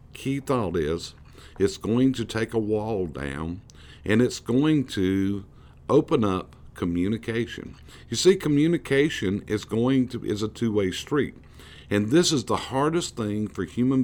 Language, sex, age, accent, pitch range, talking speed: English, male, 50-69, American, 75-130 Hz, 150 wpm